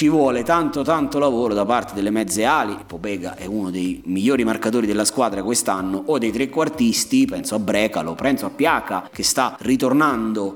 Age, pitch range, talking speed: 30-49, 125-200 Hz, 175 wpm